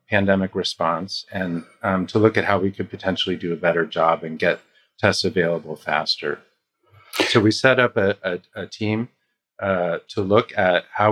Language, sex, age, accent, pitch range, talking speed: English, male, 40-59, American, 90-105 Hz, 180 wpm